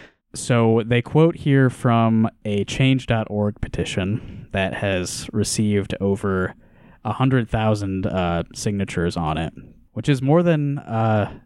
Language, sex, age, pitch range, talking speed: English, male, 20-39, 95-125 Hz, 110 wpm